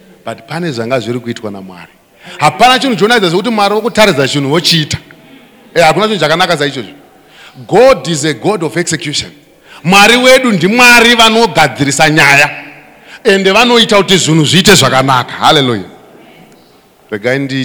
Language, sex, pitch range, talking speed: English, male, 120-165 Hz, 135 wpm